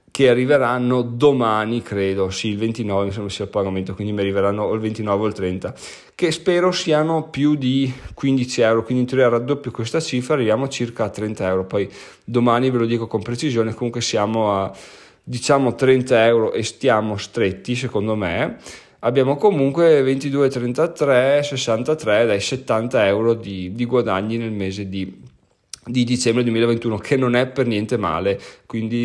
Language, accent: Italian, native